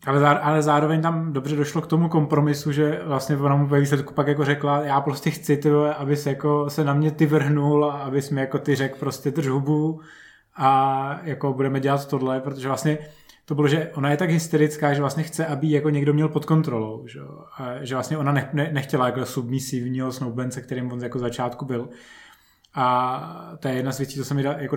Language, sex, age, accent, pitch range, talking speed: Czech, male, 20-39, native, 130-150 Hz, 195 wpm